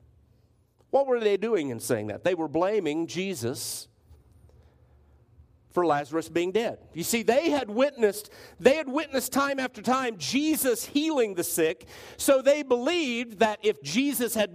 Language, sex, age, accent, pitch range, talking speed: English, male, 50-69, American, 160-235 Hz, 145 wpm